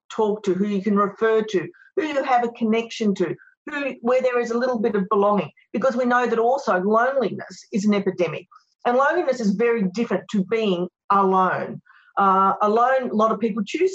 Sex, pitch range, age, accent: female, 195-240 Hz, 40-59, Australian